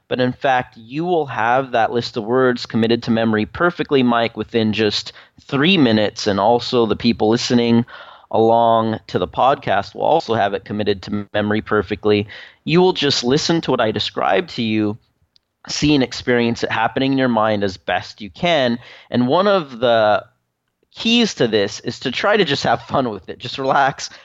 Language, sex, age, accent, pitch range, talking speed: English, male, 30-49, American, 110-135 Hz, 190 wpm